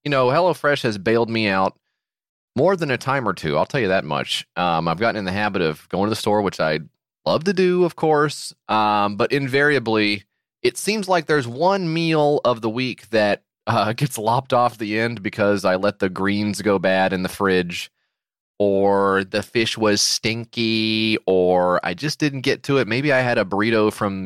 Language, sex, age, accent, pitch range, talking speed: English, male, 30-49, American, 100-145 Hz, 205 wpm